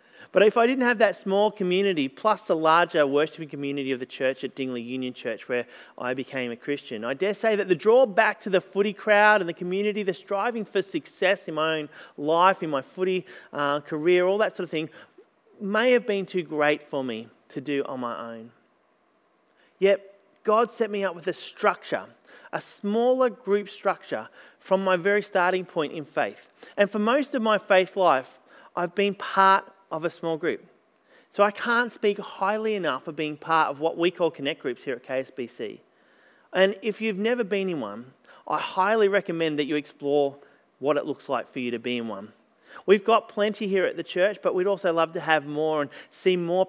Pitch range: 150-205 Hz